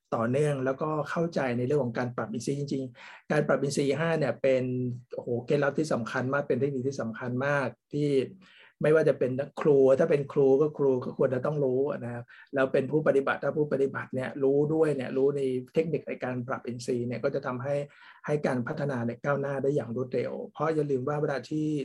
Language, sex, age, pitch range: Thai, male, 60-79, 125-150 Hz